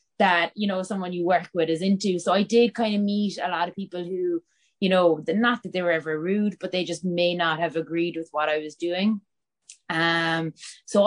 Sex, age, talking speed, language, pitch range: female, 20-39, 230 wpm, English, 155-175 Hz